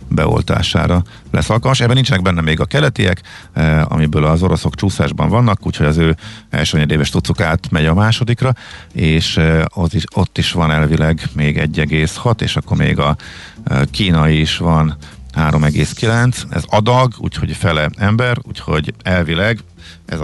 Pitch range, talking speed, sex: 80-100 Hz, 150 wpm, male